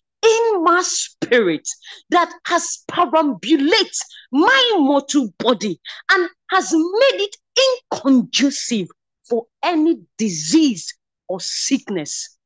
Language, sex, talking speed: English, female, 90 wpm